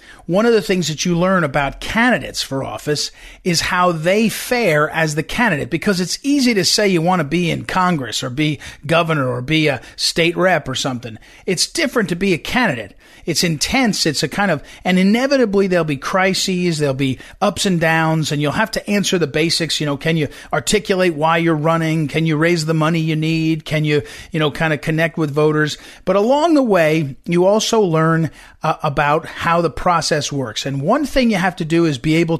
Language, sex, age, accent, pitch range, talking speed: English, male, 40-59, American, 155-200 Hz, 215 wpm